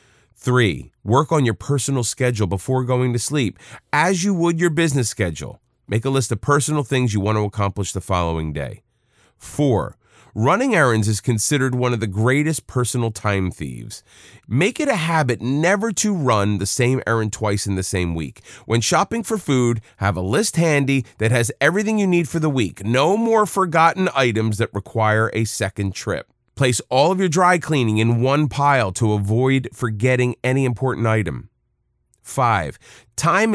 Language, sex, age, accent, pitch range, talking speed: English, male, 30-49, American, 110-145 Hz, 175 wpm